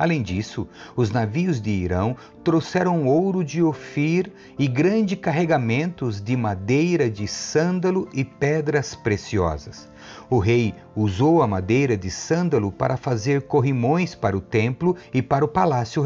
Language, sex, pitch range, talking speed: Portuguese, male, 105-165 Hz, 140 wpm